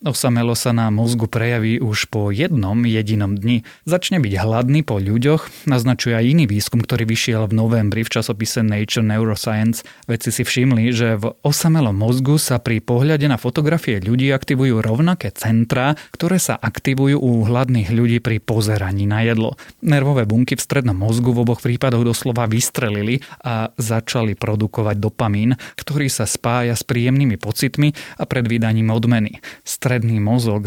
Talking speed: 155 wpm